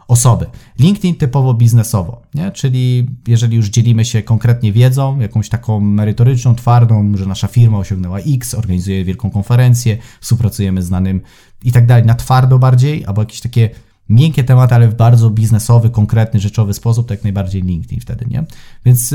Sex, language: male, Polish